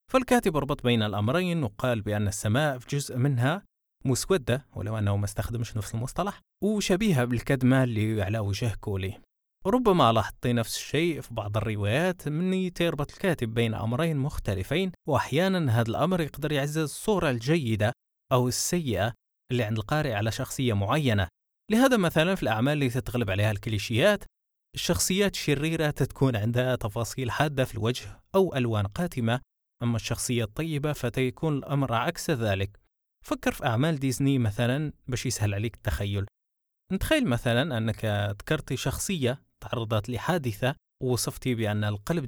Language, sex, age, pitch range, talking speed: Arabic, male, 20-39, 110-155 Hz, 135 wpm